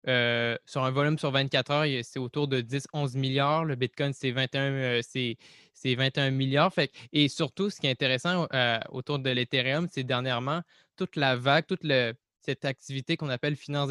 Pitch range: 130-155 Hz